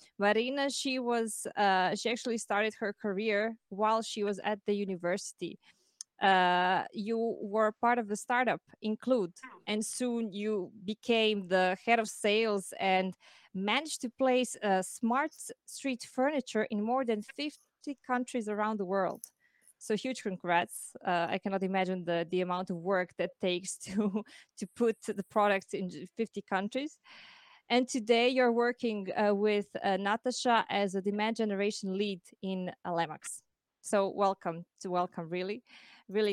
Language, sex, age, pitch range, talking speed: English, female, 20-39, 195-235 Hz, 150 wpm